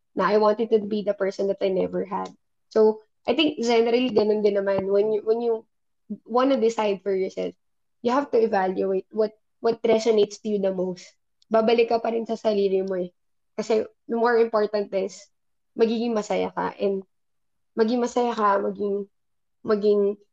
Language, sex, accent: Filipino, female, native